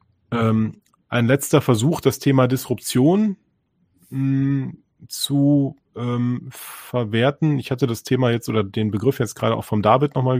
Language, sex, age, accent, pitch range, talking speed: German, male, 30-49, German, 110-130 Hz, 145 wpm